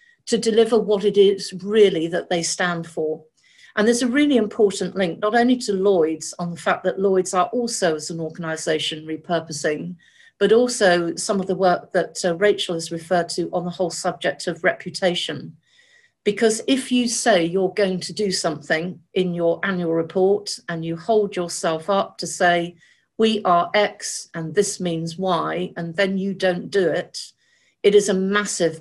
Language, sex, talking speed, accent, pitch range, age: English, female, 180 wpm, British, 170-205 Hz, 50-69